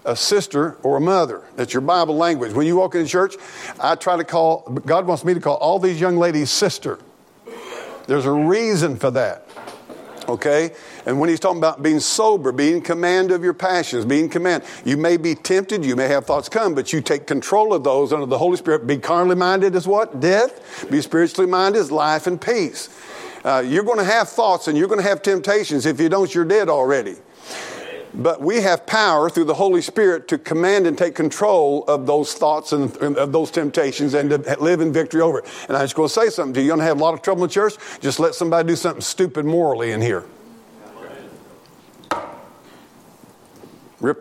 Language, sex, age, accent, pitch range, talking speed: English, male, 50-69, American, 145-180 Hz, 210 wpm